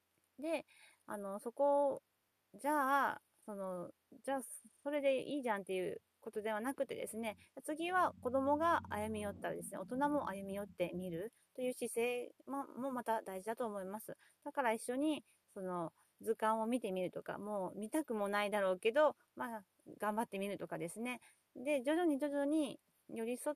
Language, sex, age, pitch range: Japanese, female, 30-49, 200-275 Hz